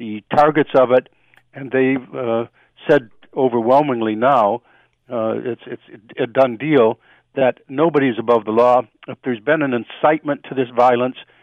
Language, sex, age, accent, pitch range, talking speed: English, male, 60-79, American, 115-135 Hz, 150 wpm